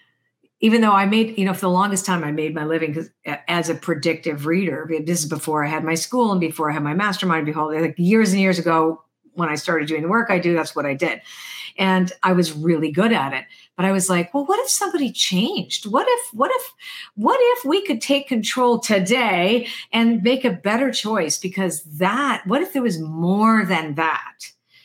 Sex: female